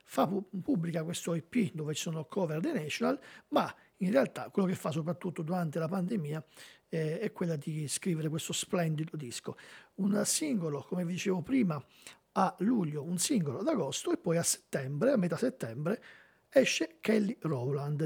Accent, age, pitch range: native, 50-69, 160-200 Hz